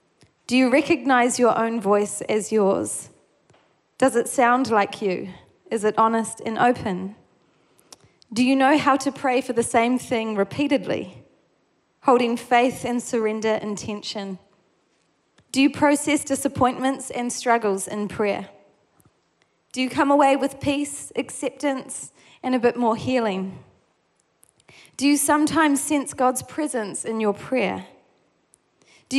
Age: 20-39